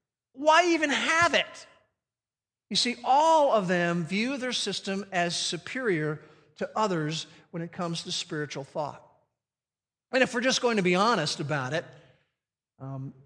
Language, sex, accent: English, male, American